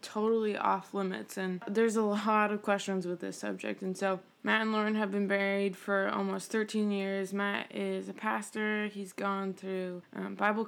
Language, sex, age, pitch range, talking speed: English, female, 20-39, 190-220 Hz, 185 wpm